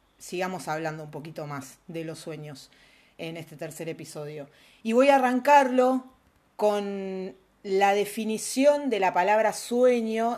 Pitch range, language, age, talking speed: 160-225 Hz, Spanish, 40-59, 135 wpm